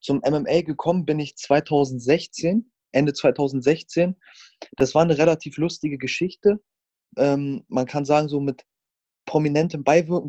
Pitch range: 135-160 Hz